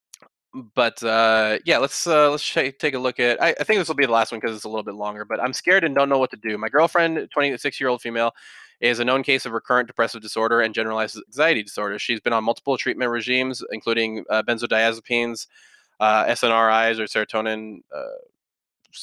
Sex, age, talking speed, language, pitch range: male, 20-39, 205 wpm, English, 110-135 Hz